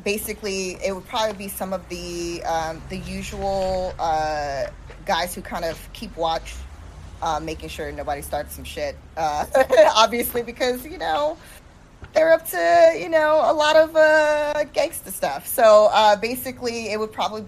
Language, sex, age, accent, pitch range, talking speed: English, female, 20-39, American, 160-210 Hz, 160 wpm